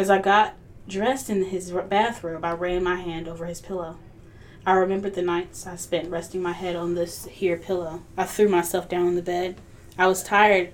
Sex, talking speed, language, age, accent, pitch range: female, 205 wpm, English, 10-29, American, 170-195 Hz